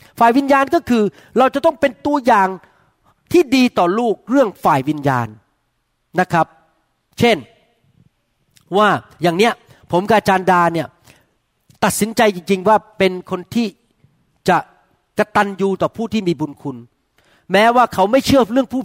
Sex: male